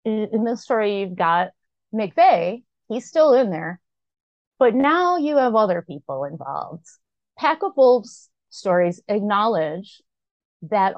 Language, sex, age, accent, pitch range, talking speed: English, female, 30-49, American, 170-235 Hz, 125 wpm